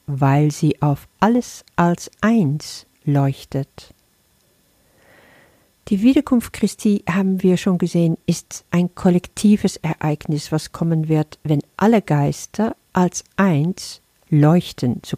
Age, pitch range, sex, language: 50-69, 145-185 Hz, female, German